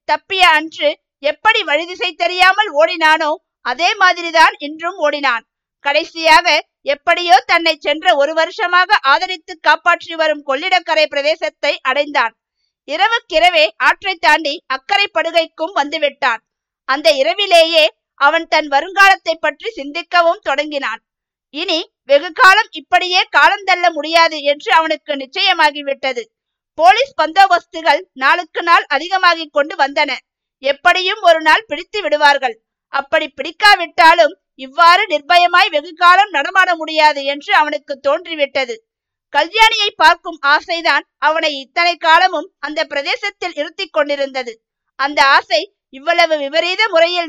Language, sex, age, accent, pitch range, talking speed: Tamil, female, 50-69, native, 290-355 Hz, 100 wpm